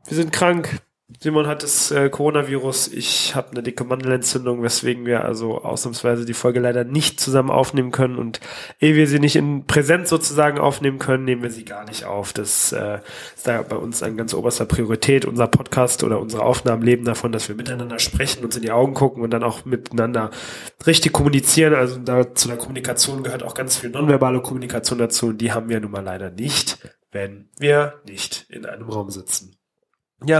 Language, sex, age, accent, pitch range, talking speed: German, male, 30-49, German, 115-140 Hz, 195 wpm